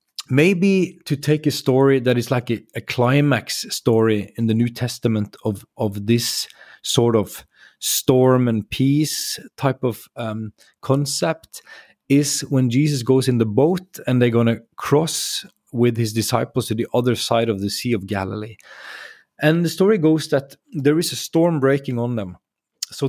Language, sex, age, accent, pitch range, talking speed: English, male, 30-49, Swedish, 115-145 Hz, 170 wpm